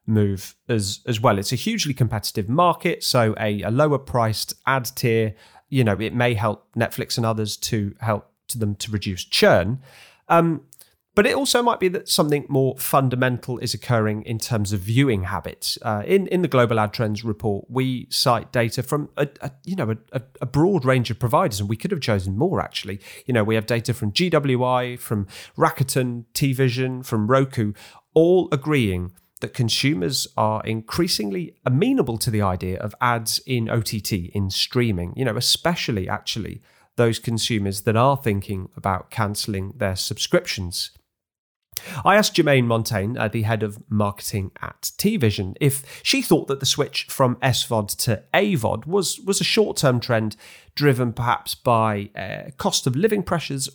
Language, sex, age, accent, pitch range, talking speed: English, male, 30-49, British, 110-140 Hz, 165 wpm